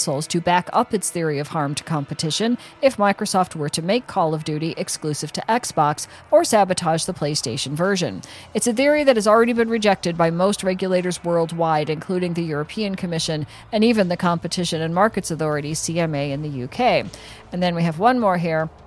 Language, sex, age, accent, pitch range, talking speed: English, female, 40-59, American, 165-210 Hz, 190 wpm